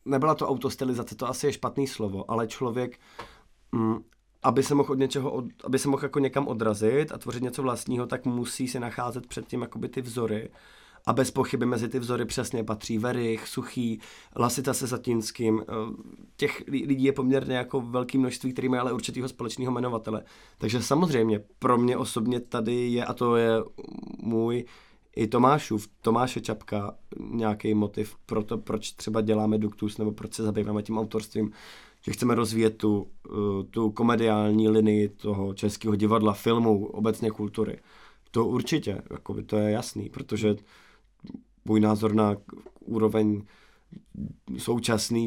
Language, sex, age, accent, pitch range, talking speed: Czech, male, 20-39, native, 110-125 Hz, 150 wpm